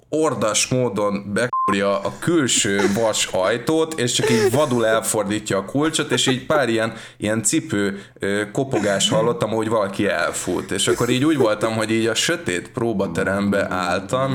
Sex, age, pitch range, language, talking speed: male, 20-39, 100-130 Hz, Hungarian, 155 wpm